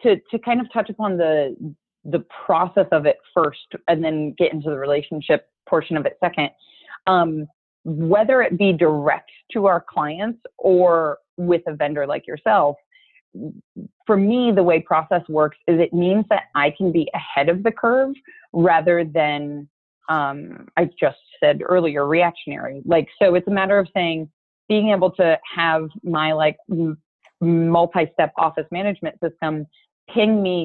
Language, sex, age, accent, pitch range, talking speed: English, female, 30-49, American, 155-195 Hz, 160 wpm